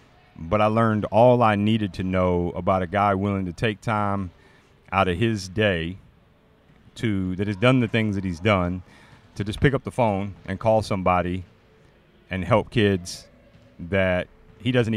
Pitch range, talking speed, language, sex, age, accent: 90-110 Hz, 170 wpm, English, male, 40-59, American